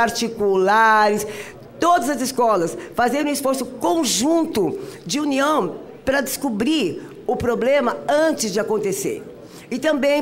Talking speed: 110 wpm